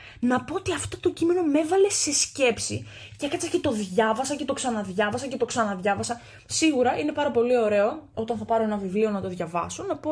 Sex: female